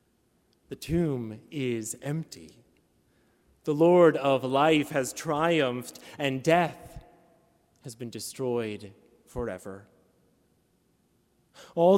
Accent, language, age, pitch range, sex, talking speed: American, English, 30-49, 135-180 Hz, male, 85 wpm